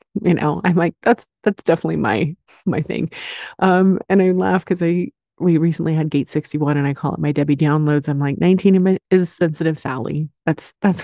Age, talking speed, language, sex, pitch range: 30-49, 195 wpm, English, female, 150-185 Hz